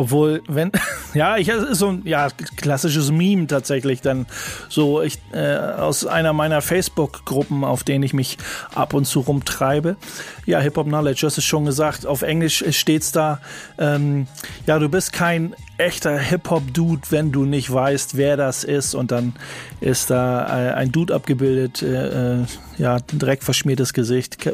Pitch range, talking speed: 135-160 Hz, 155 wpm